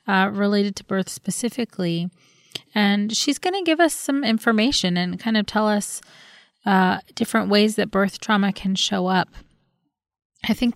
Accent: American